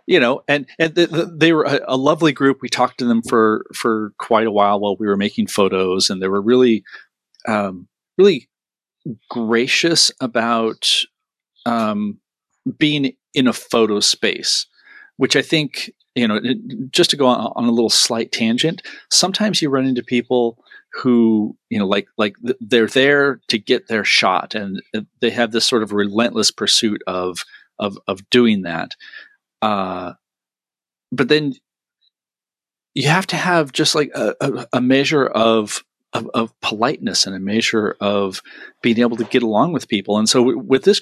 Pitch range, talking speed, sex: 110-145 Hz, 165 wpm, male